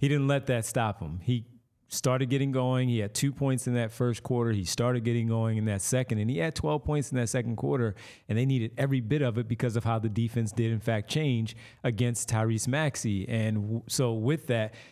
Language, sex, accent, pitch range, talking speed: English, male, American, 115-140 Hz, 230 wpm